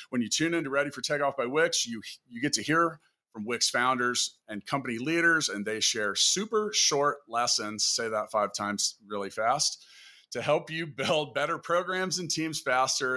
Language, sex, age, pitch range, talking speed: English, male, 40-59, 120-150 Hz, 185 wpm